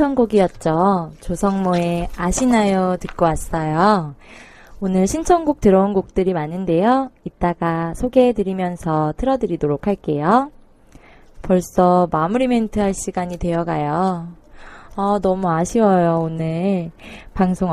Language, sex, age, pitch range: Korean, female, 20-39, 170-215 Hz